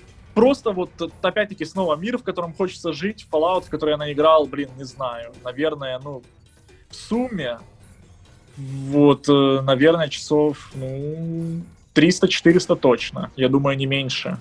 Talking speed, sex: 130 wpm, male